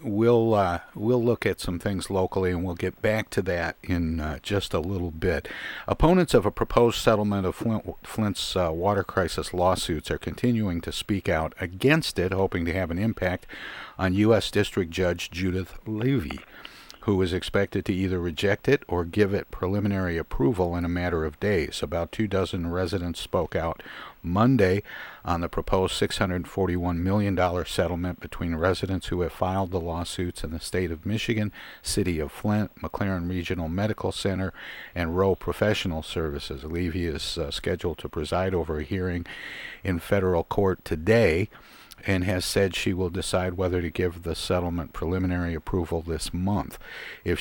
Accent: American